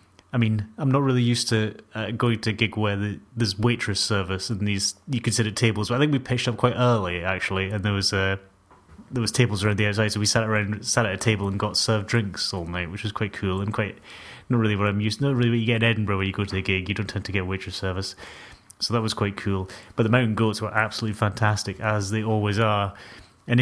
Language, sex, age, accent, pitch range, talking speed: English, male, 30-49, British, 100-110 Hz, 265 wpm